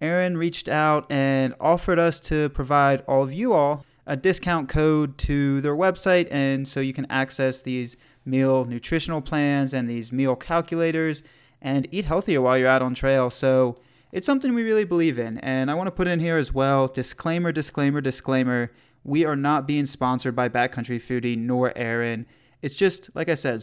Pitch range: 125-155 Hz